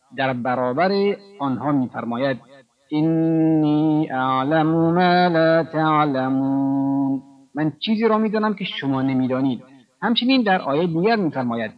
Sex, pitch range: male, 130-175 Hz